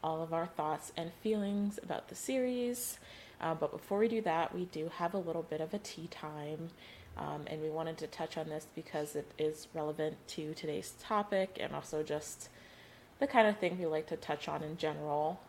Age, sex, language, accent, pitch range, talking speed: 20-39, female, English, American, 150-175 Hz, 210 wpm